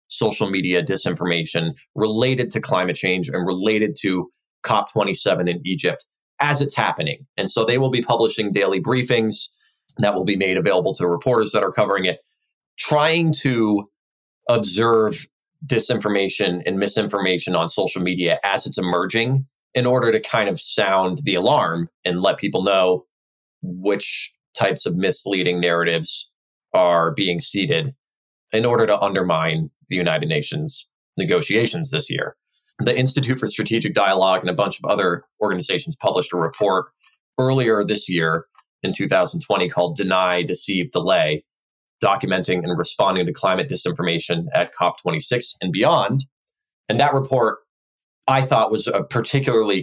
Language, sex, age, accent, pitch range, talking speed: English, male, 20-39, American, 90-135 Hz, 145 wpm